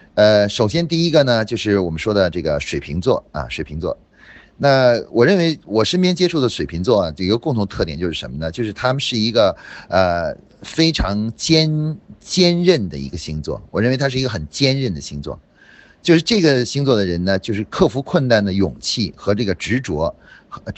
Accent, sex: native, male